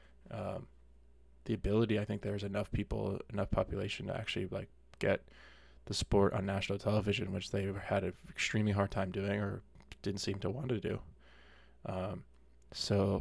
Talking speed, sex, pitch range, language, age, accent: 165 wpm, male, 90-105 Hz, English, 20-39, American